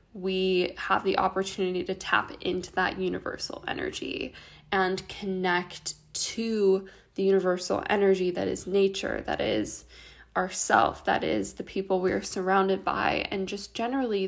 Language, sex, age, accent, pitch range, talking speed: English, female, 10-29, American, 185-205 Hz, 140 wpm